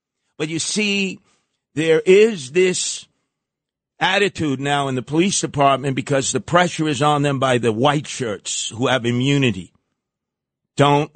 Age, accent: 50-69, American